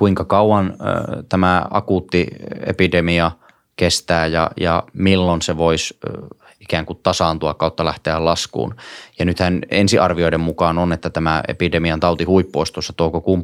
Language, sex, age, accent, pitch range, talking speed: Finnish, male, 20-39, native, 85-95 Hz, 130 wpm